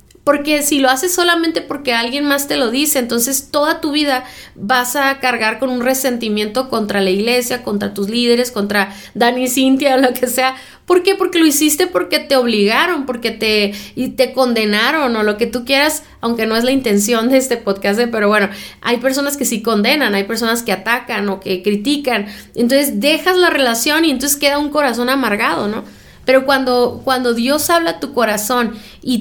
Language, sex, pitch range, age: Spanish, female, 225-280 Hz, 30-49